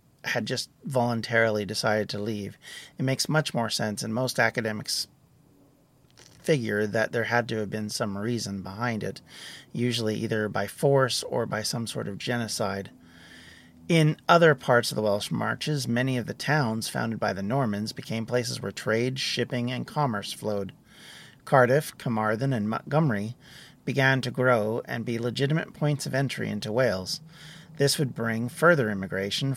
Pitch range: 110-145 Hz